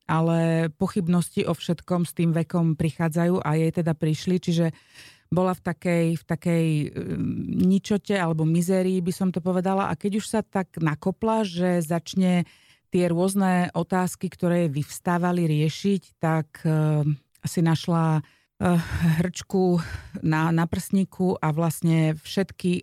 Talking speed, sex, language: 135 wpm, female, Slovak